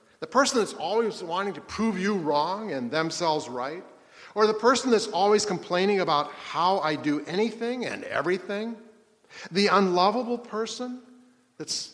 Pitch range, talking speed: 145-210 Hz, 145 wpm